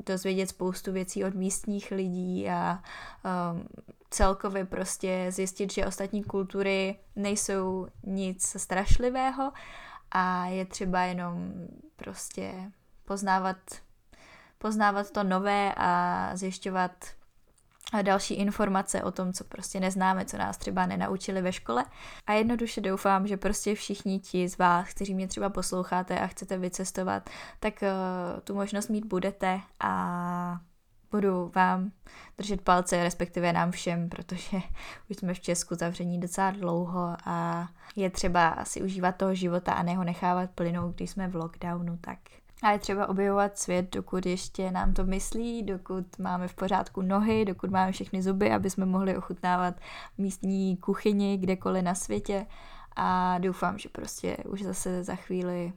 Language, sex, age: Czech, female, 10-29